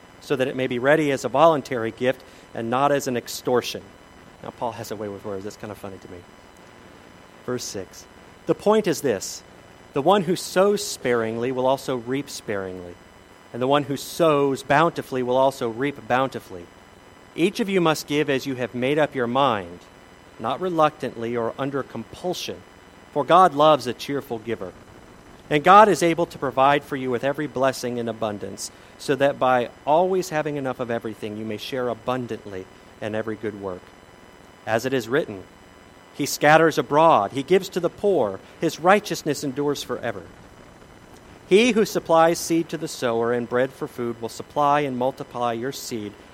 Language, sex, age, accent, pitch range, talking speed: English, male, 40-59, American, 105-145 Hz, 180 wpm